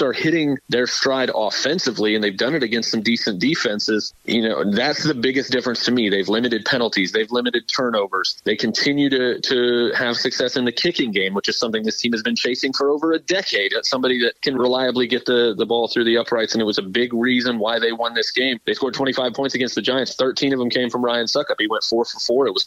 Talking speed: 250 wpm